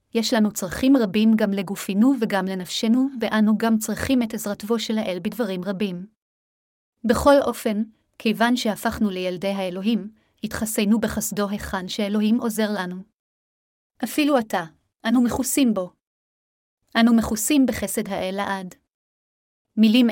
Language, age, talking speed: Hebrew, 30-49, 120 wpm